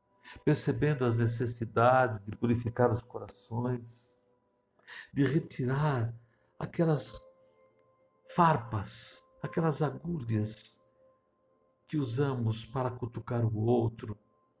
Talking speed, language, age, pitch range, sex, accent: 80 wpm, Portuguese, 60-79, 105-135 Hz, male, Brazilian